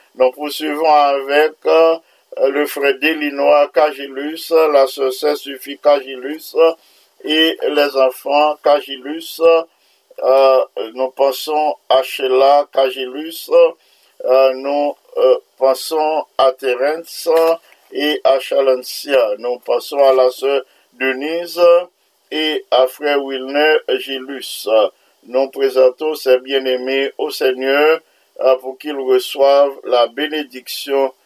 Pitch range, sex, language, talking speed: 130-150 Hz, male, English, 100 wpm